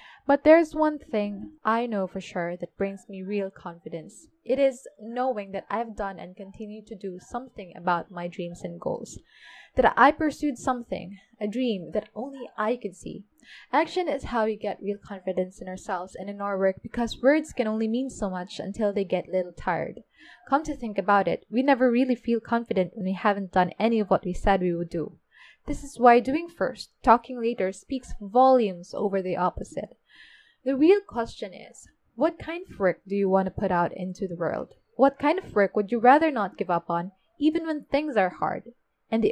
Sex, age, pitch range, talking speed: female, 20-39, 195-260 Hz, 205 wpm